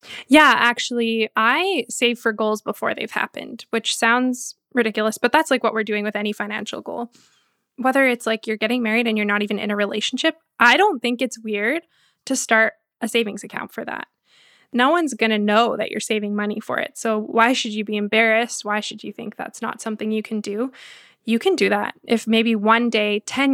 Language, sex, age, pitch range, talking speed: English, female, 20-39, 215-250 Hz, 210 wpm